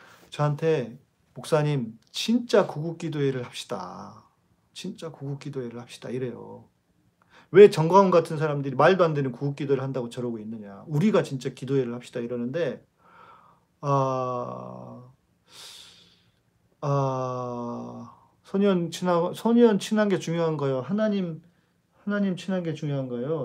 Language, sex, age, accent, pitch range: Korean, male, 40-59, native, 125-170 Hz